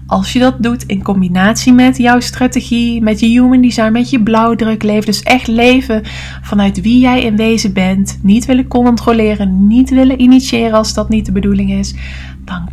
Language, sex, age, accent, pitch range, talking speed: English, female, 20-39, Dutch, 175-225 Hz, 185 wpm